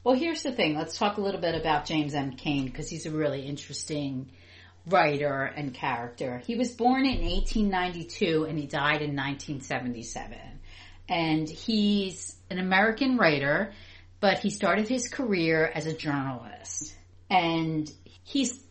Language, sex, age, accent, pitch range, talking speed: English, female, 40-59, American, 135-185 Hz, 150 wpm